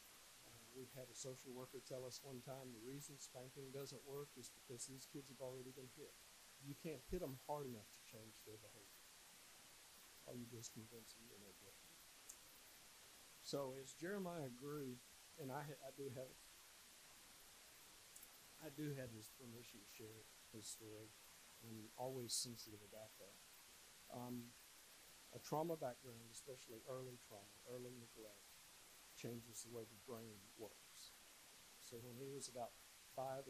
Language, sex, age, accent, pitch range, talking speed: English, male, 50-69, American, 115-140 Hz, 145 wpm